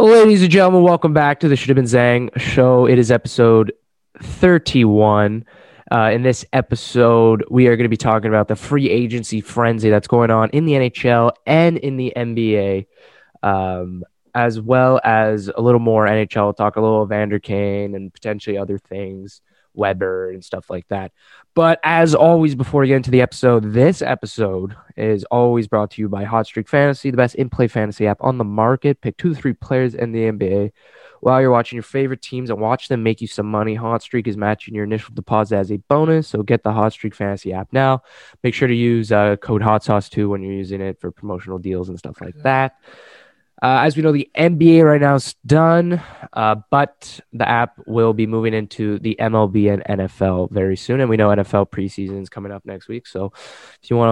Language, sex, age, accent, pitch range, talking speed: English, male, 20-39, American, 105-130 Hz, 210 wpm